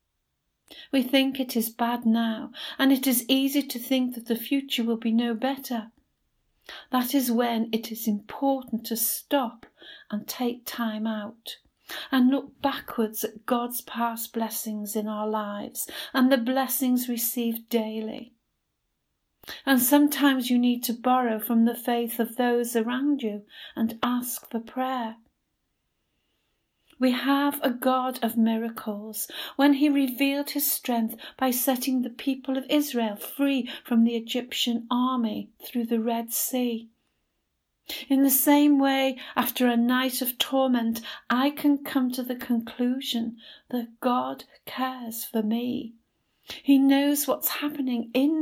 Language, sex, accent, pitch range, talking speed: English, female, British, 230-270 Hz, 140 wpm